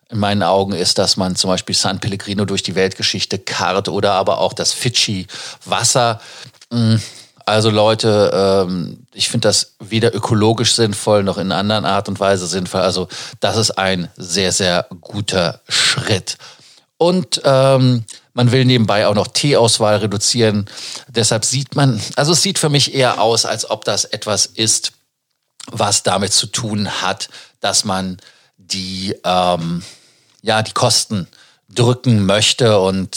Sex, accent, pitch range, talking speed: male, German, 95-120 Hz, 145 wpm